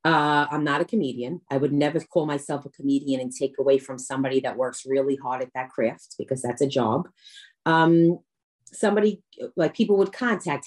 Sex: female